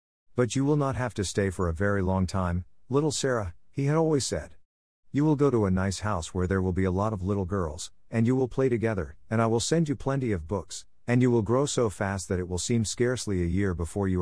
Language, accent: English, American